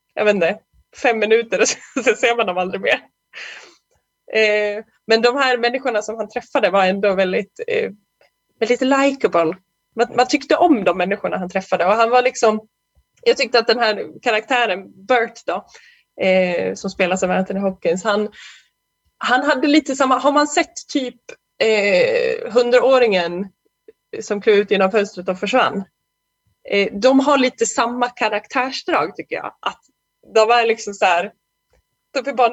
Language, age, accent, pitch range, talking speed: Swedish, 20-39, native, 190-260 Hz, 155 wpm